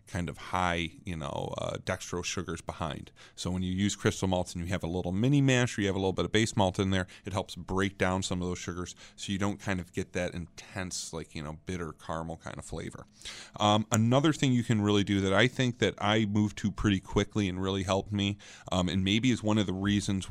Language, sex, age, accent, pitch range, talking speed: English, male, 30-49, American, 95-110 Hz, 250 wpm